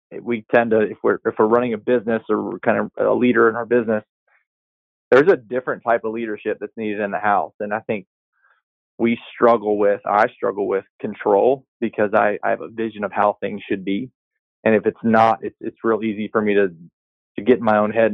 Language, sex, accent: English, male, American